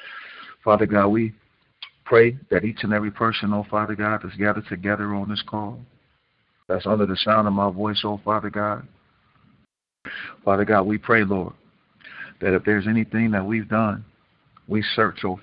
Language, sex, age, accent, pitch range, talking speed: English, male, 50-69, American, 100-105 Hz, 165 wpm